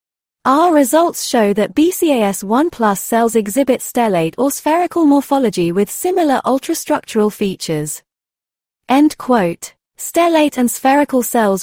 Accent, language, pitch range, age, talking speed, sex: British, English, 195-275 Hz, 30-49, 100 wpm, female